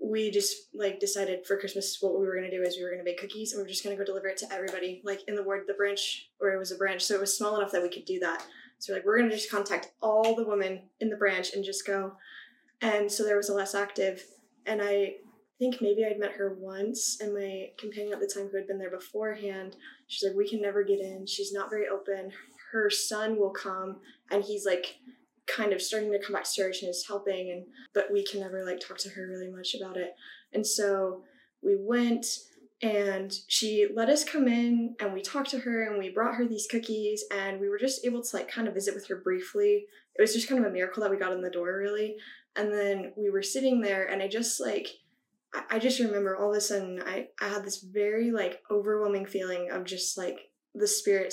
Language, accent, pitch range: English, American, 190-215 Hz